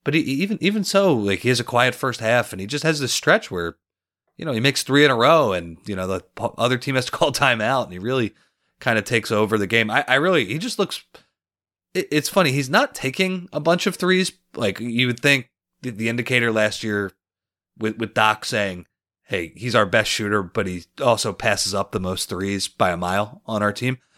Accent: American